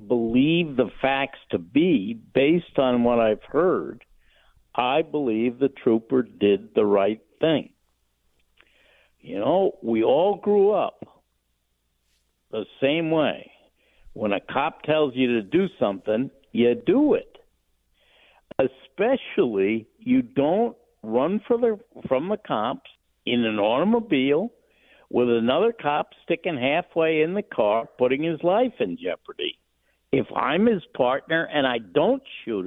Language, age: English, 60-79